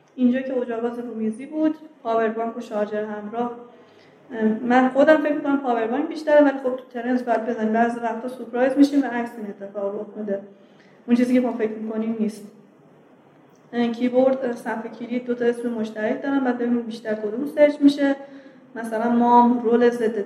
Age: 20-39